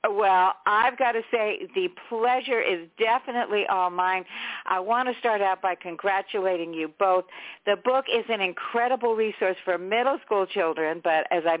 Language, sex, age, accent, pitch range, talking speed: English, female, 60-79, American, 175-230 Hz, 170 wpm